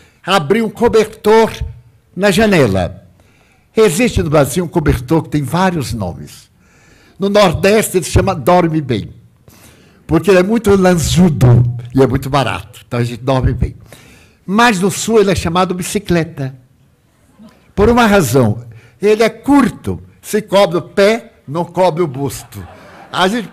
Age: 60-79